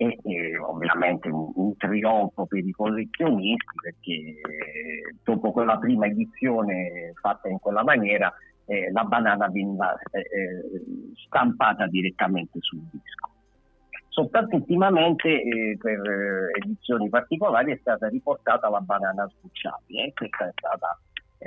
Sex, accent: male, native